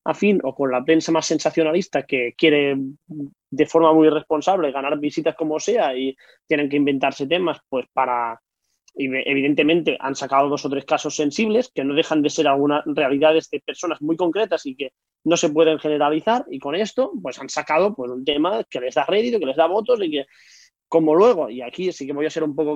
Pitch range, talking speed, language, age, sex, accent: 140-175 Hz, 215 wpm, Spanish, 20-39, male, Spanish